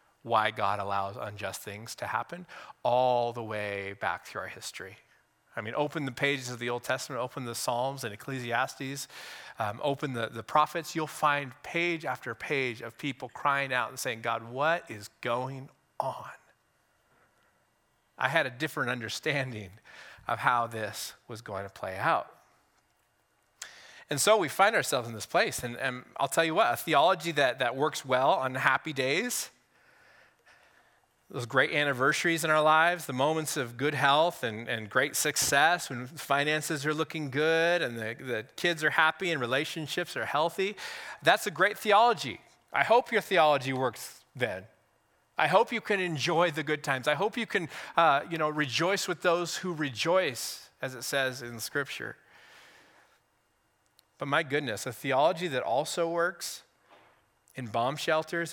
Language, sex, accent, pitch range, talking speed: English, male, American, 120-160 Hz, 165 wpm